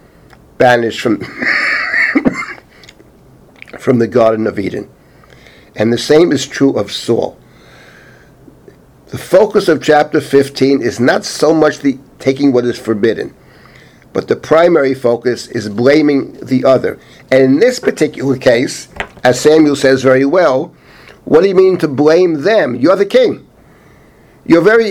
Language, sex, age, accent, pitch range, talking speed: English, male, 60-79, American, 135-175 Hz, 140 wpm